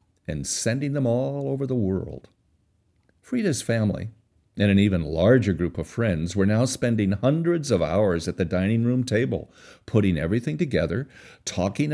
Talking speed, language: 155 wpm, English